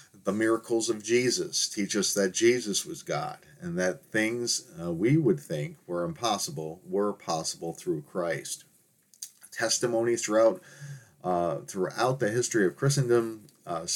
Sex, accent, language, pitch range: male, American, English, 105-170 Hz